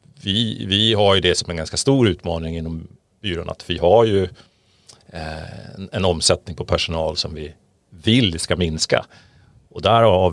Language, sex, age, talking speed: Swedish, male, 40-59, 170 wpm